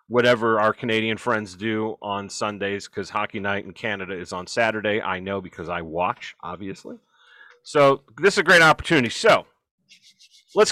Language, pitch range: English, 110-175 Hz